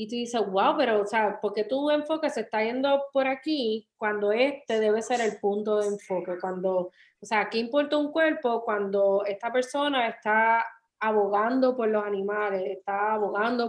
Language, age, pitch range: Spanish, 20-39, 205-250 Hz